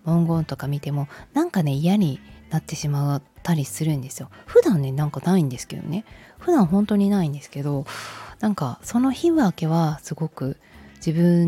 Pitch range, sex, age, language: 140-185 Hz, female, 20-39, Japanese